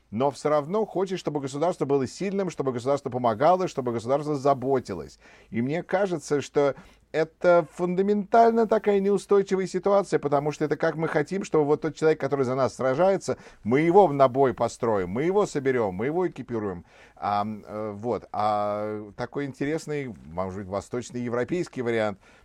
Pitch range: 110-150 Hz